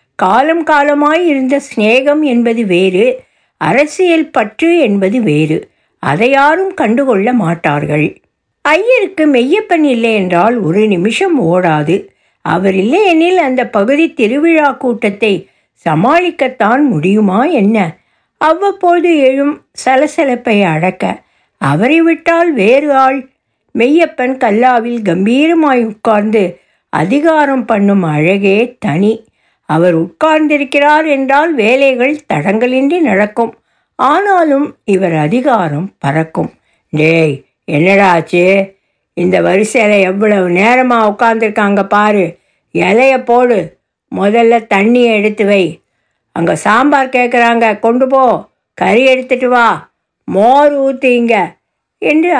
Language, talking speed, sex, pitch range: Tamil, 90 wpm, female, 200-285 Hz